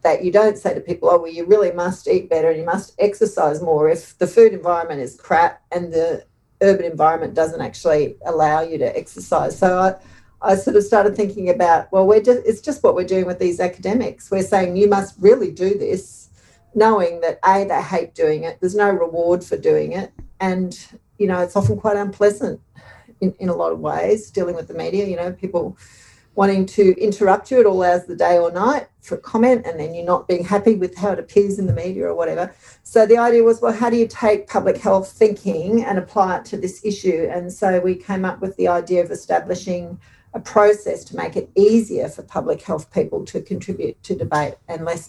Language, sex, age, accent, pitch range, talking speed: English, female, 40-59, Australian, 175-220 Hz, 220 wpm